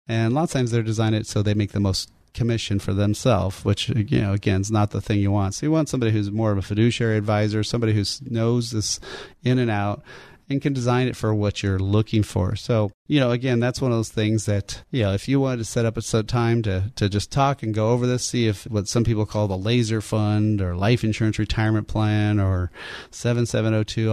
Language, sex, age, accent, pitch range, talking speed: English, male, 30-49, American, 105-125 Hz, 240 wpm